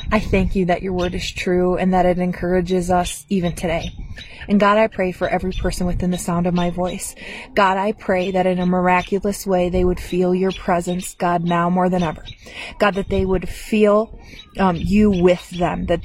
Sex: female